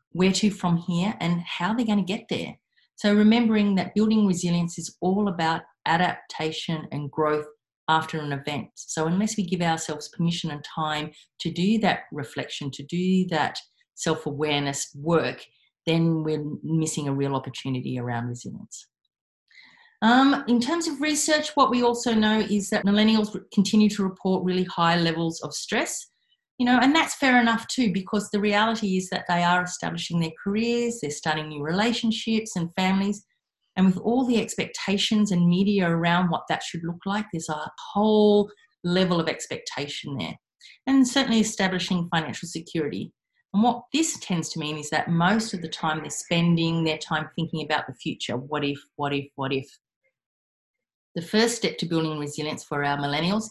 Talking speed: 170 wpm